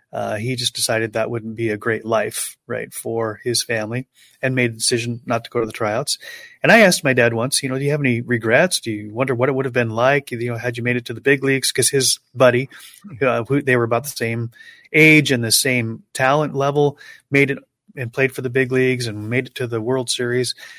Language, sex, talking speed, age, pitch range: English, male, 255 wpm, 30-49, 120-150 Hz